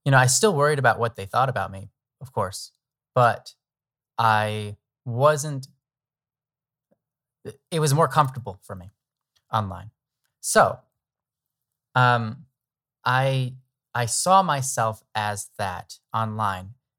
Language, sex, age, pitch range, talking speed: English, male, 20-39, 110-135 Hz, 115 wpm